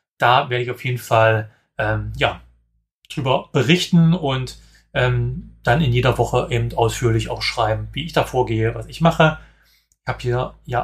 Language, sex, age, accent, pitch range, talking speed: German, male, 30-49, German, 115-140 Hz, 170 wpm